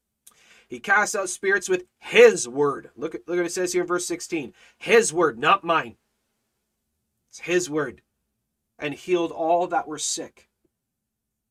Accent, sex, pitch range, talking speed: American, male, 135-190 Hz, 155 wpm